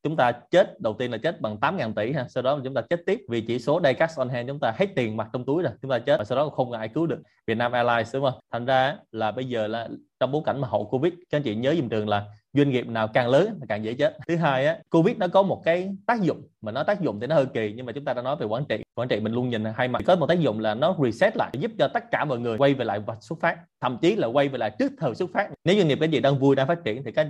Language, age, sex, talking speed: Vietnamese, 20-39, male, 330 wpm